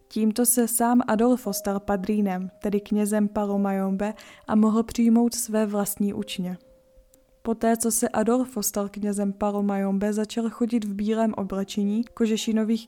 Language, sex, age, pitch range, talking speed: Czech, female, 20-39, 205-230 Hz, 130 wpm